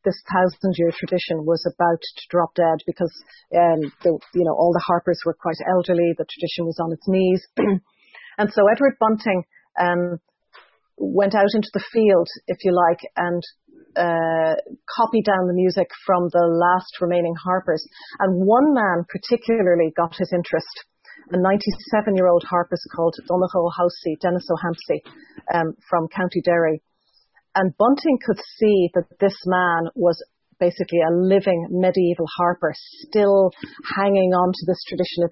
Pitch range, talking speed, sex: 165-190 Hz, 150 wpm, female